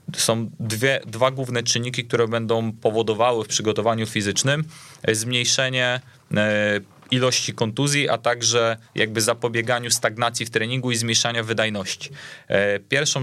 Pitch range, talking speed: 110-125 Hz, 125 wpm